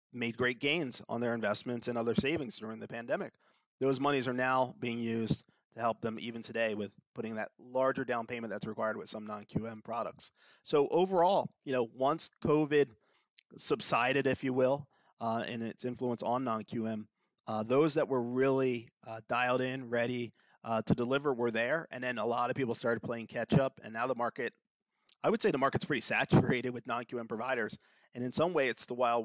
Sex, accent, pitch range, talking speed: male, American, 115-130 Hz, 195 wpm